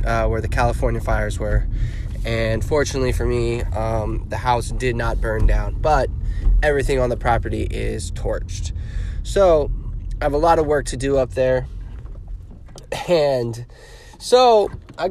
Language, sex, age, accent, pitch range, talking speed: English, male, 20-39, American, 110-140 Hz, 150 wpm